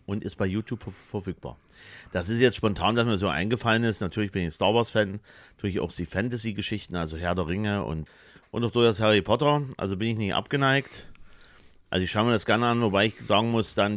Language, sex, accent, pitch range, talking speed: German, male, German, 90-115 Hz, 225 wpm